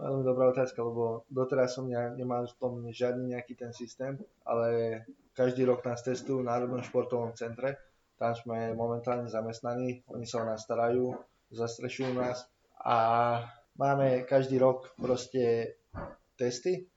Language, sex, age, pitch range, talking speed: Slovak, male, 20-39, 115-130 Hz, 140 wpm